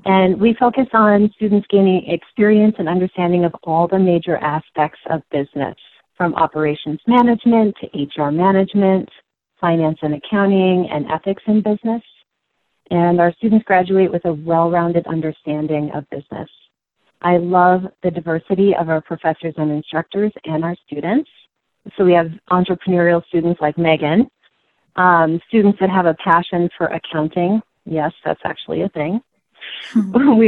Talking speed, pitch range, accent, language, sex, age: 140 wpm, 160-200 Hz, American, English, female, 30-49